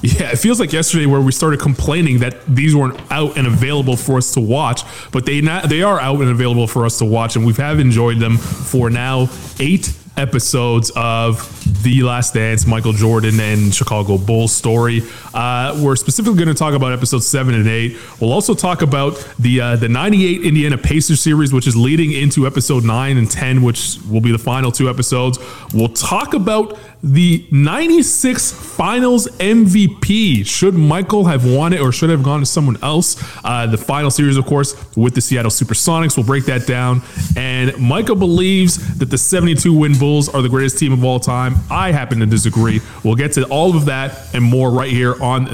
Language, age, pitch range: English, 20-39, 120-150 Hz